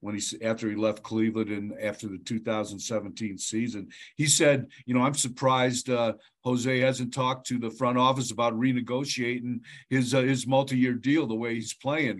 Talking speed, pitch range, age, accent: 175 wpm, 115-135 Hz, 50-69, American